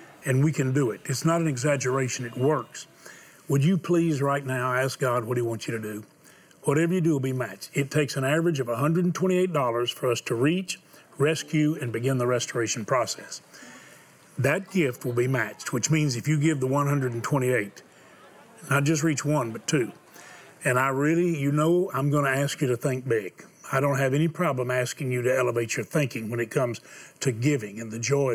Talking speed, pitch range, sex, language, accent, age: 200 wpm, 125-155 Hz, male, English, American, 40-59